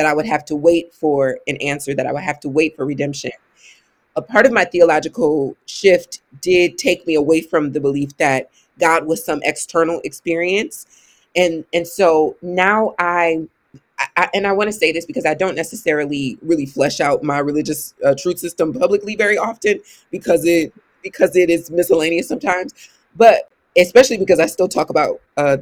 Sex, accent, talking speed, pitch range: female, American, 180 wpm, 150-180 Hz